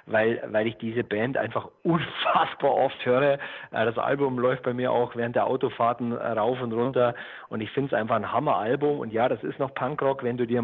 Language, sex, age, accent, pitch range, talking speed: German, male, 40-59, German, 115-135 Hz, 210 wpm